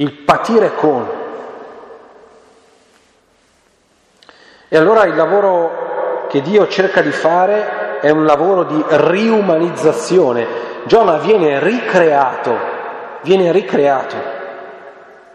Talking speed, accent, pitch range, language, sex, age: 85 wpm, native, 140-220 Hz, Italian, male, 40-59